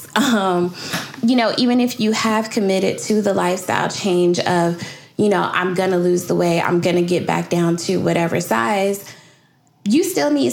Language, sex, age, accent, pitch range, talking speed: English, female, 10-29, American, 180-225 Hz, 190 wpm